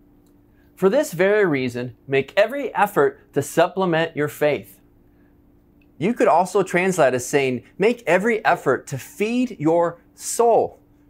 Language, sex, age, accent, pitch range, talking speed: English, male, 30-49, American, 135-200 Hz, 130 wpm